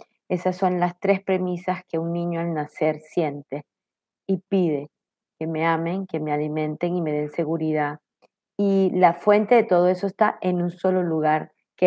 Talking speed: 175 wpm